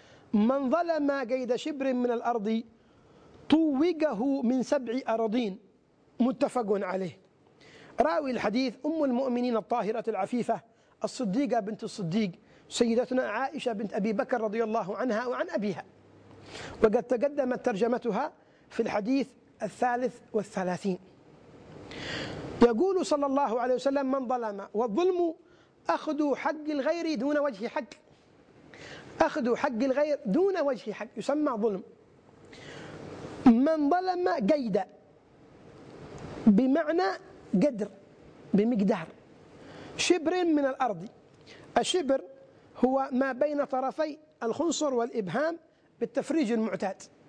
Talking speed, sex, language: 100 wpm, male, Arabic